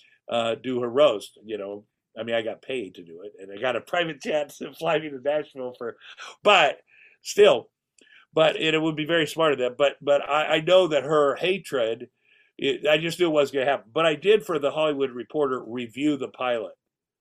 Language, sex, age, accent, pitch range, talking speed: English, male, 50-69, American, 120-155 Hz, 215 wpm